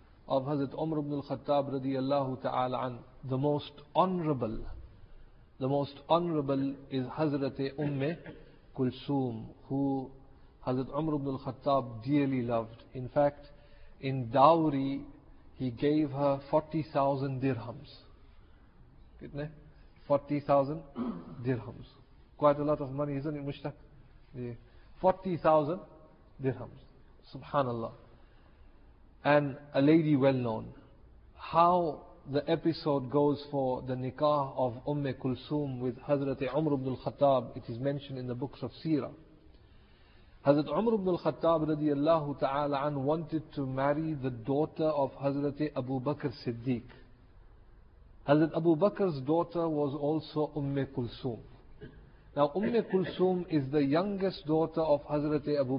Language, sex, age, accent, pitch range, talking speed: English, male, 40-59, Indian, 130-150 Hz, 120 wpm